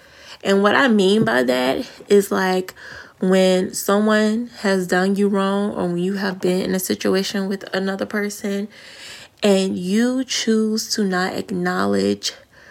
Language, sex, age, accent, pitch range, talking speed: English, female, 20-39, American, 185-220 Hz, 145 wpm